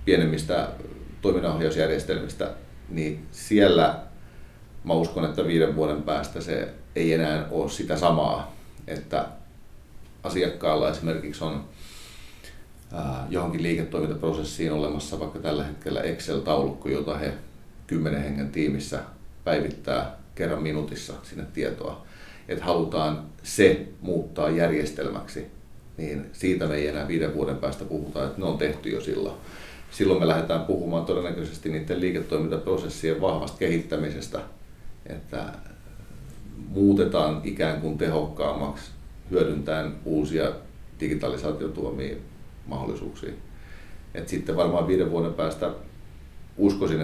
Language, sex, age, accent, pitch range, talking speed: Finnish, male, 40-59, native, 70-80 Hz, 105 wpm